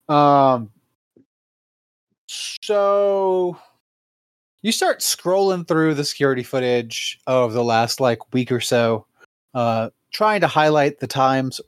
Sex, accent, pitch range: male, American, 120-165 Hz